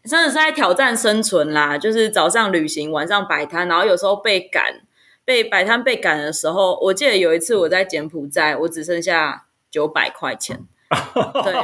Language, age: Chinese, 20-39